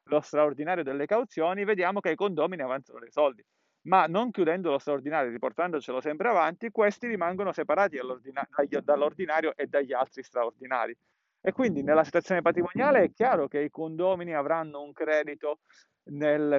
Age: 40-59